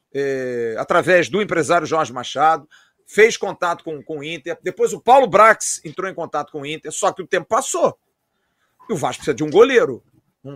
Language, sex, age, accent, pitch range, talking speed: Portuguese, male, 40-59, Brazilian, 165-240 Hz, 195 wpm